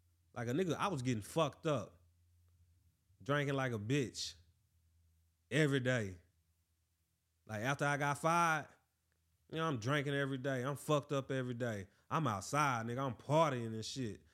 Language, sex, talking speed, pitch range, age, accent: English, male, 155 wpm, 95-135 Hz, 20-39, American